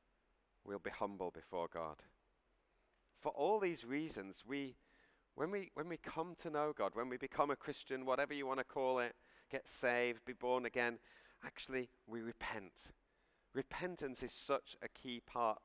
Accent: British